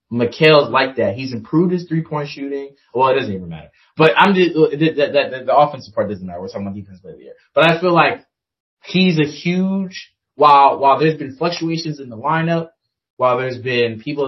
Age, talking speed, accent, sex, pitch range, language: 20-39, 205 wpm, American, male, 115-150 Hz, English